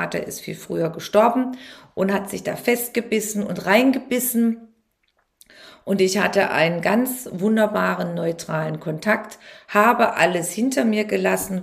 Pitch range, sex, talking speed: 175-230 Hz, female, 125 wpm